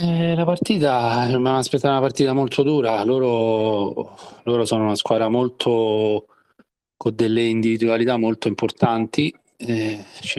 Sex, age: male, 30-49